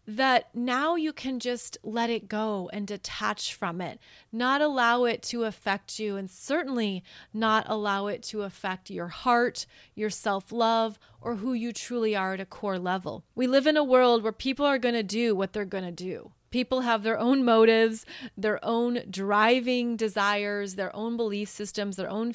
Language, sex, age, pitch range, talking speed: English, female, 30-49, 205-250 Hz, 180 wpm